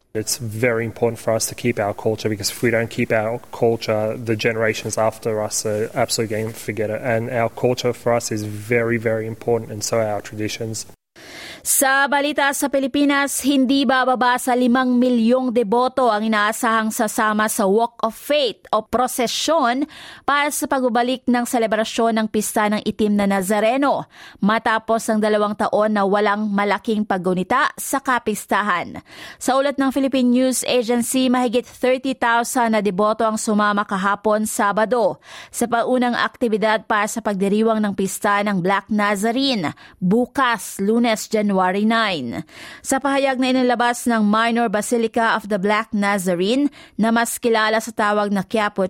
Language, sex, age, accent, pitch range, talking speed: English, female, 20-39, Filipino, 200-240 Hz, 155 wpm